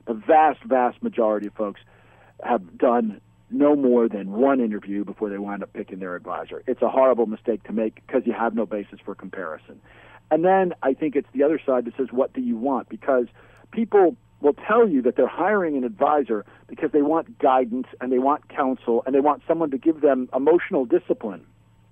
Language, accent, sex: English, American, male